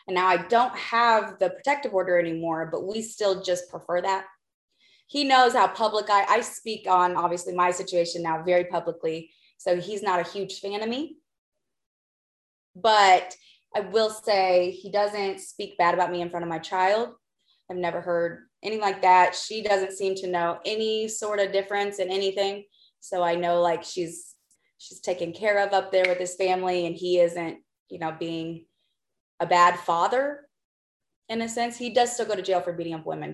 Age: 20-39